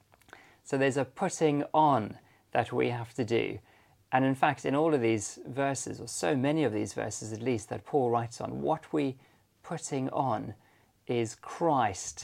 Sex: male